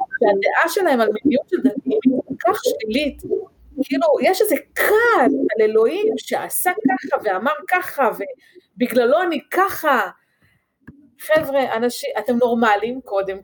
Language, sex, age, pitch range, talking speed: Hebrew, female, 30-49, 245-365 Hz, 125 wpm